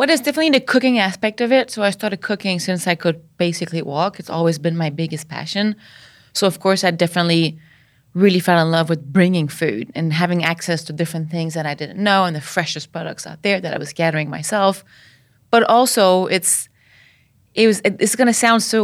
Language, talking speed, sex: English, 210 wpm, female